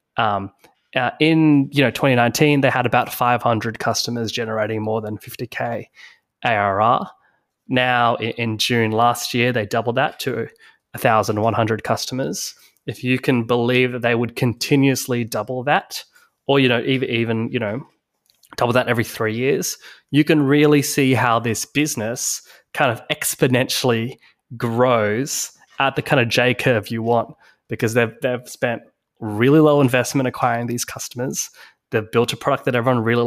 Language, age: English, 20-39